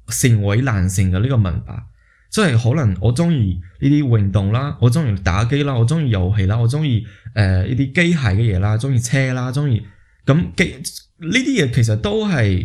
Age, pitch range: 20-39, 100-140 Hz